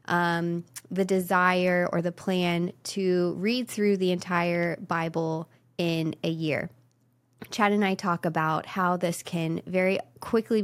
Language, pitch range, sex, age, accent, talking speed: English, 165-190 Hz, female, 20-39, American, 140 wpm